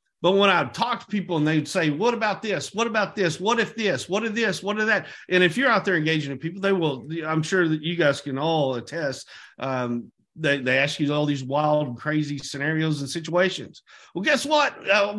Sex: male